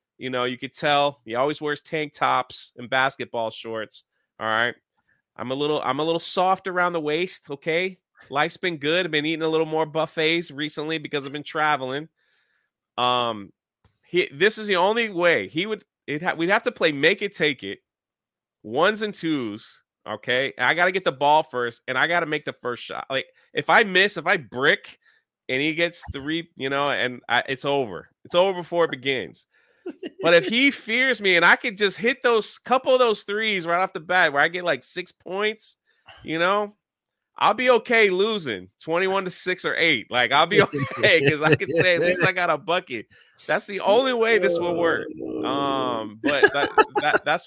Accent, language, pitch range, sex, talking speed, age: American, English, 135-190 Hz, male, 205 wpm, 30-49